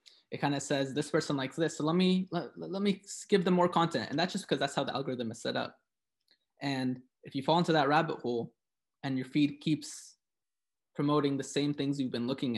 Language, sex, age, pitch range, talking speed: English, male, 20-39, 135-165 Hz, 230 wpm